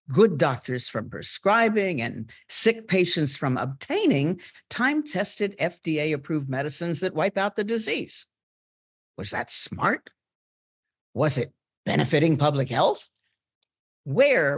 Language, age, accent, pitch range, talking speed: English, 60-79, American, 130-185 Hz, 105 wpm